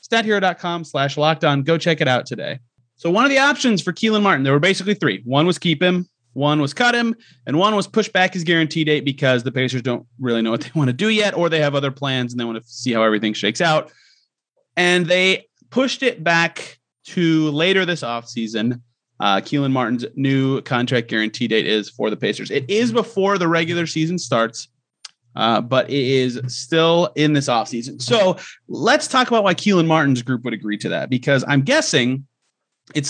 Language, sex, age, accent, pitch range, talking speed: English, male, 30-49, American, 125-175 Hz, 210 wpm